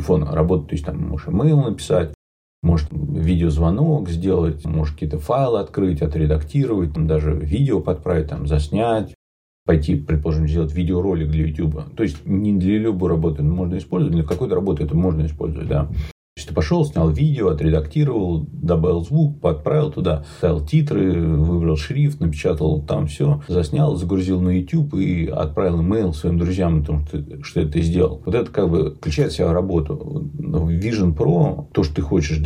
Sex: male